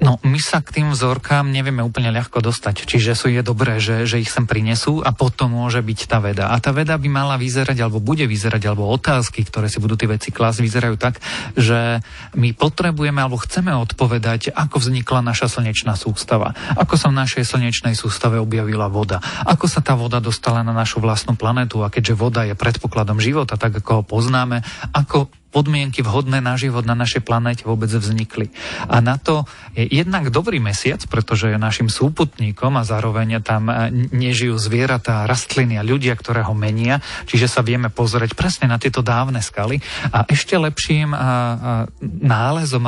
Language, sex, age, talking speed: Slovak, male, 40-59, 180 wpm